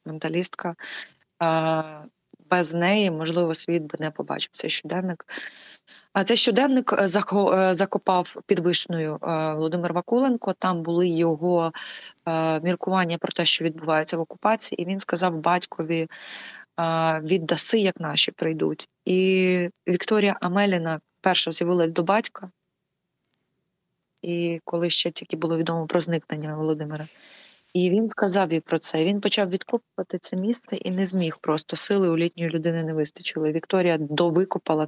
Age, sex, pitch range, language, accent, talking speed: 20-39, female, 160-185 Hz, Ukrainian, native, 130 wpm